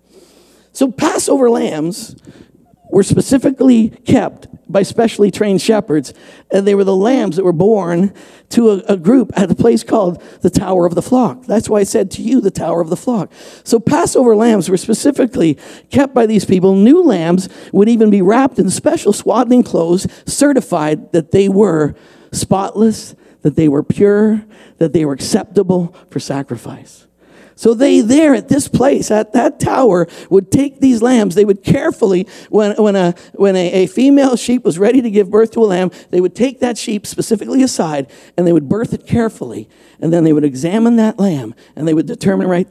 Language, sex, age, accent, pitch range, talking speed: English, male, 50-69, American, 170-230 Hz, 185 wpm